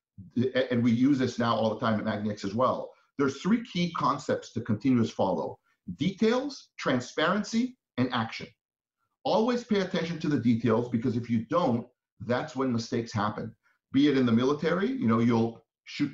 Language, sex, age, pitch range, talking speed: English, male, 40-59, 120-150 Hz, 170 wpm